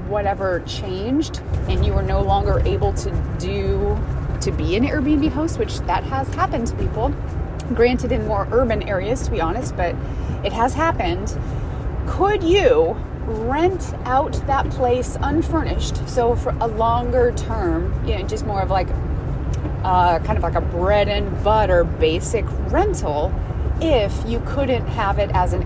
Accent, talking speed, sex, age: American, 155 wpm, female, 30-49